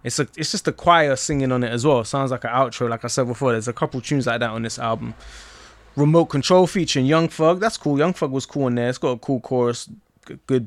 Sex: male